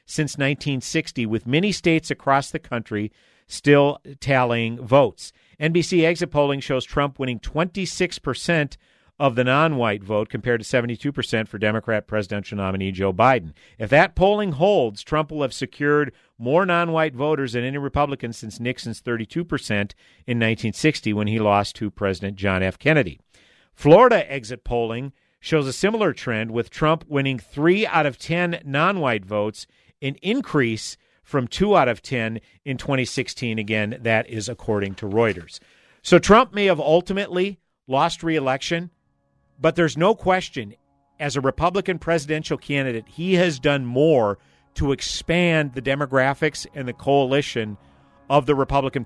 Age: 50-69